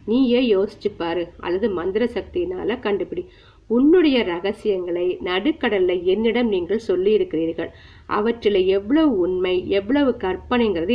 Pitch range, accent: 180-250 Hz, native